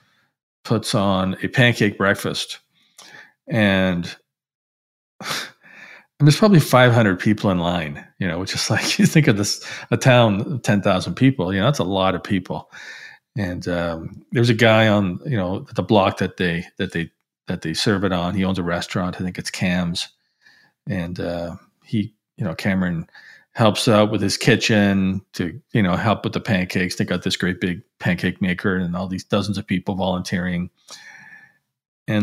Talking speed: 175 wpm